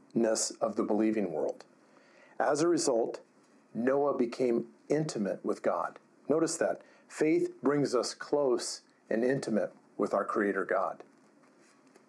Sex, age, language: male, 50-69, English